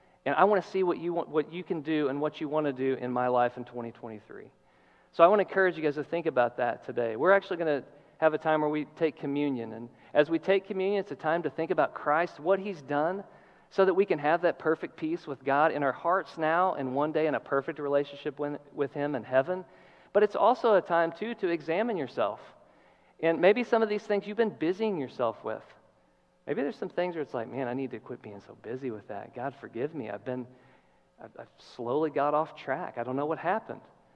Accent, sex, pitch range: American, male, 125-175 Hz